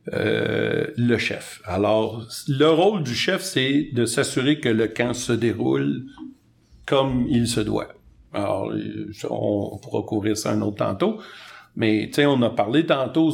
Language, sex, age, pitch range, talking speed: French, male, 50-69, 110-135 Hz, 150 wpm